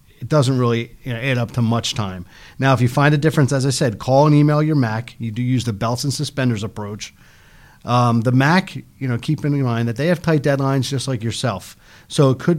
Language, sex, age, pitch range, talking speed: English, male, 40-59, 115-145 Hz, 245 wpm